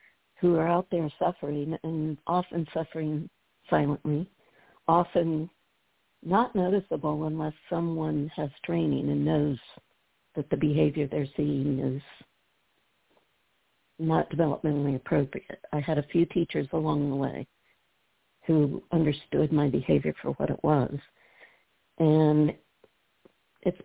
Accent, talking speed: American, 115 wpm